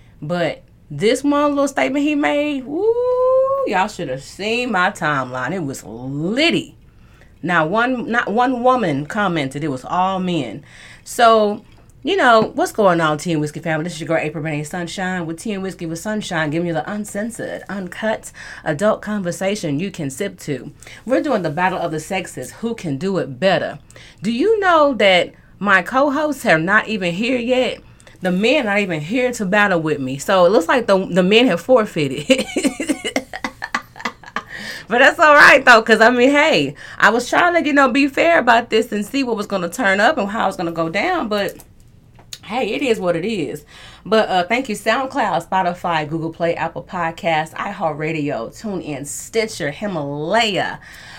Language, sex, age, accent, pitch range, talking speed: English, female, 30-49, American, 165-245 Hz, 190 wpm